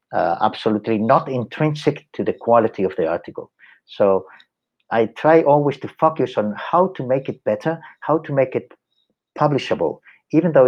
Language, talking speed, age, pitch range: English, 165 wpm, 50-69, 100-145 Hz